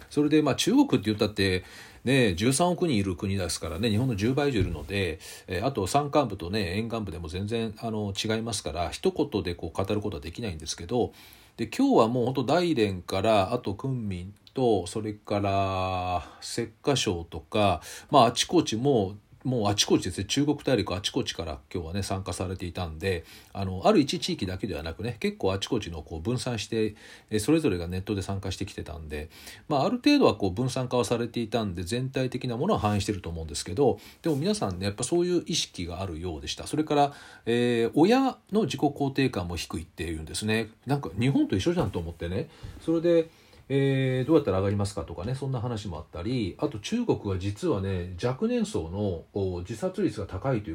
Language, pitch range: Japanese, 95-130 Hz